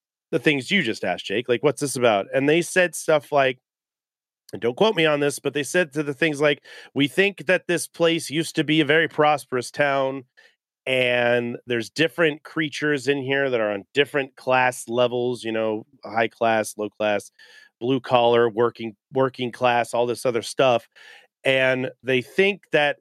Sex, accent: male, American